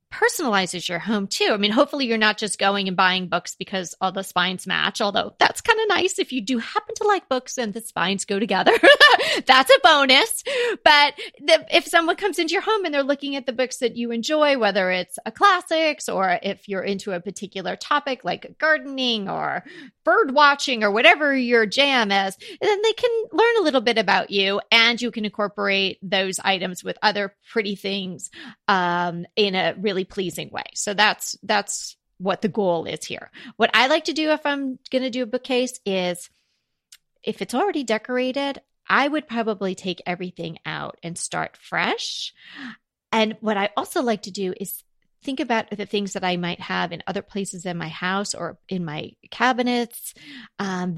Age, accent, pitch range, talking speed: 30-49, American, 190-275 Hz, 190 wpm